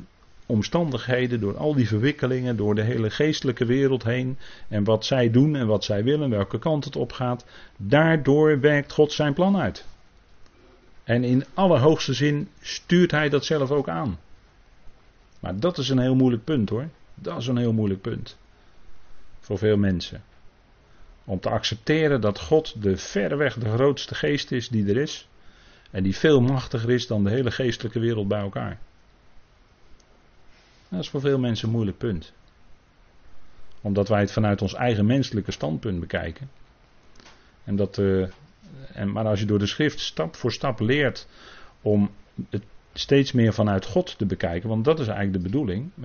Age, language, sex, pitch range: 40-59, Dutch, male, 100-135 Hz